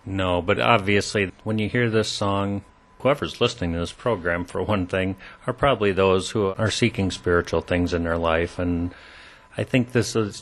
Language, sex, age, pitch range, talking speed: English, male, 40-59, 95-115 Hz, 185 wpm